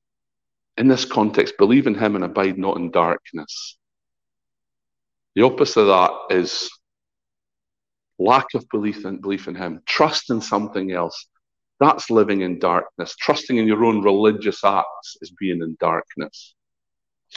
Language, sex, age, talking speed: English, male, 50-69, 140 wpm